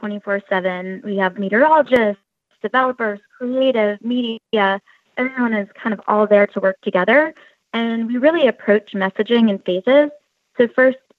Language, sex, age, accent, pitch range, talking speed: English, female, 20-39, American, 195-230 Hz, 130 wpm